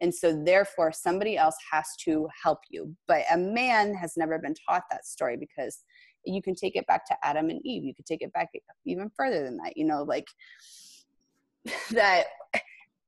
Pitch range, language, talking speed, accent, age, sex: 160-230 Hz, English, 190 wpm, American, 20-39, female